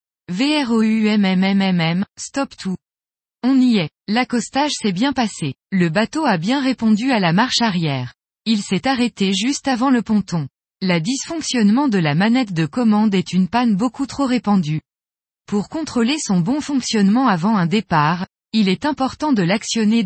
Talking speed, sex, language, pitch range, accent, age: 170 wpm, female, French, 180-250 Hz, French, 20-39